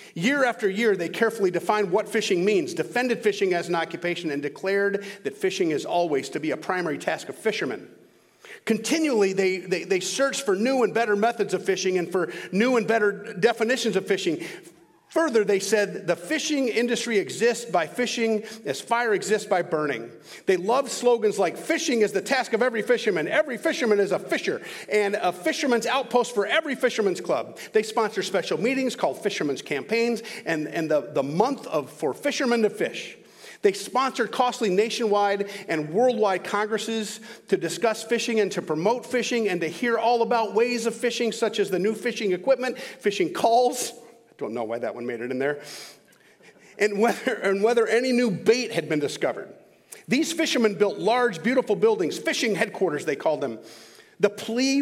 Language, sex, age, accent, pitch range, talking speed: English, male, 40-59, American, 190-245 Hz, 180 wpm